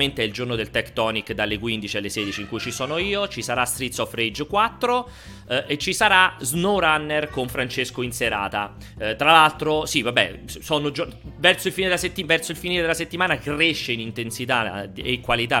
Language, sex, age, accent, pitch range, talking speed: Italian, male, 30-49, native, 110-160 Hz, 205 wpm